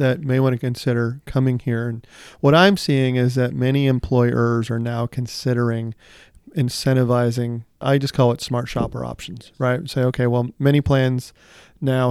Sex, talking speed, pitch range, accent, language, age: male, 170 wpm, 120-130 Hz, American, English, 40-59